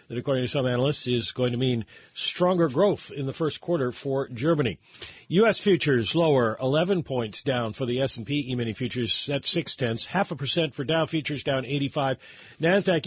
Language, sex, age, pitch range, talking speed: English, male, 40-59, 115-155 Hz, 180 wpm